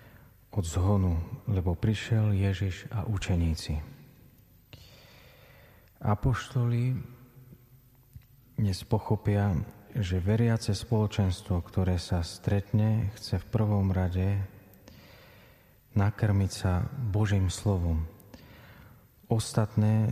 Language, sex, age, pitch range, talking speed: Slovak, male, 40-59, 95-115 Hz, 75 wpm